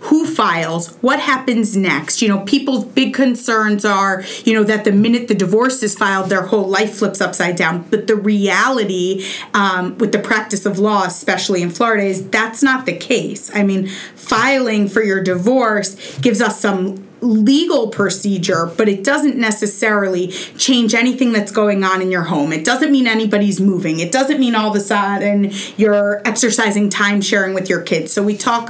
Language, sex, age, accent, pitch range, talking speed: English, female, 30-49, American, 195-245 Hz, 185 wpm